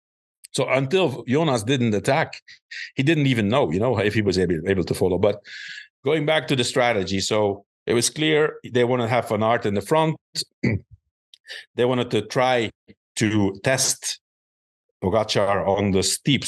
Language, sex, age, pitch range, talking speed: English, male, 50-69, 100-130 Hz, 170 wpm